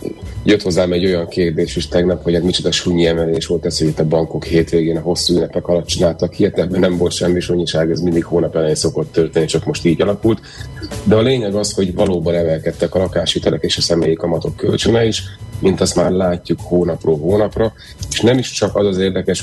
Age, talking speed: 30-49, 215 wpm